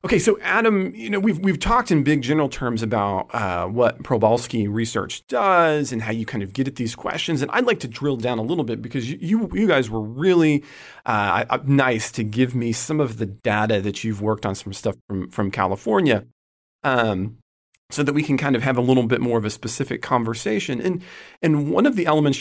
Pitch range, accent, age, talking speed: 110-150 Hz, American, 40-59, 220 wpm